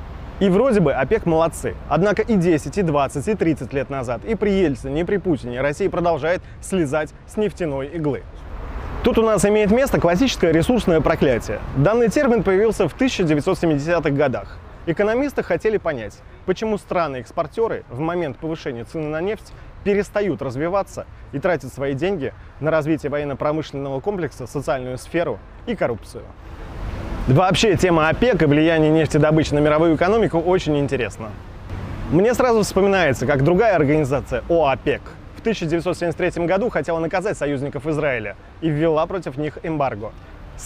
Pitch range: 135-185 Hz